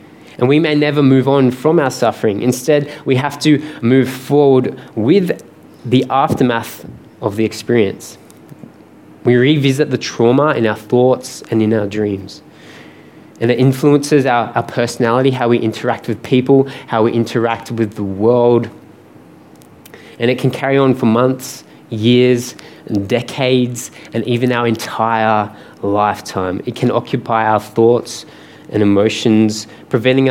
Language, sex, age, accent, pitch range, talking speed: English, male, 20-39, Australian, 115-135 Hz, 140 wpm